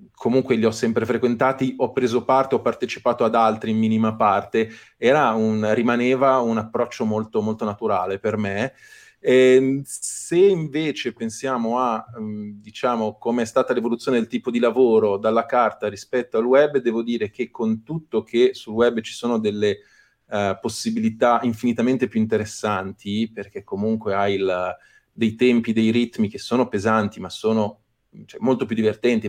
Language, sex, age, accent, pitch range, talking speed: Italian, male, 30-49, native, 110-125 Hz, 160 wpm